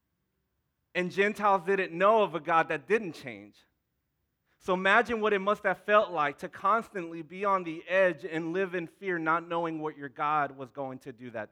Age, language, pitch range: 30-49, English, 155-195 Hz